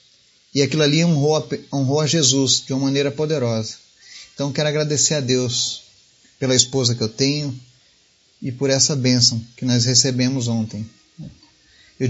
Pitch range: 125-155 Hz